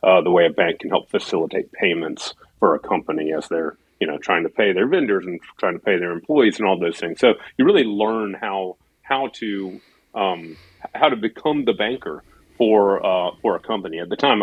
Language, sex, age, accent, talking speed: English, male, 40-59, American, 215 wpm